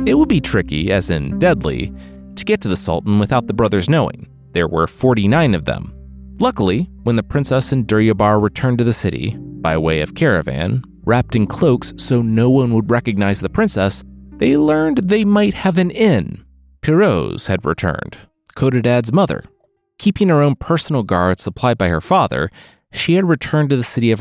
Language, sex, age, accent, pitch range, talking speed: English, male, 30-49, American, 90-125 Hz, 180 wpm